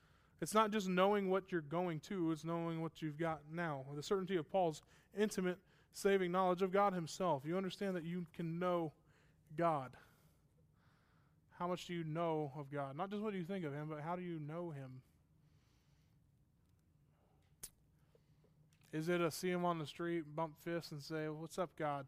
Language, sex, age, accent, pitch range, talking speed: English, male, 20-39, American, 150-180 Hz, 180 wpm